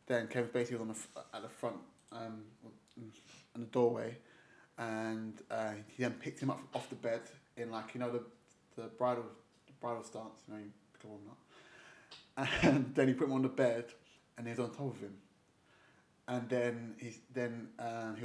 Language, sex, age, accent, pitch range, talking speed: English, male, 20-39, British, 110-125 Hz, 195 wpm